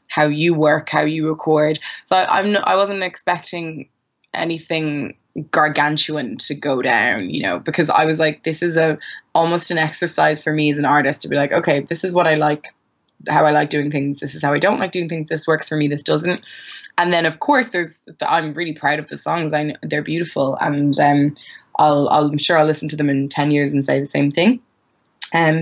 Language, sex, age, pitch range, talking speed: English, female, 20-39, 150-175 Hz, 230 wpm